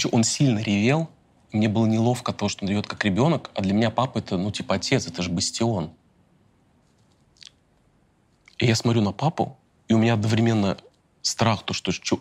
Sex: male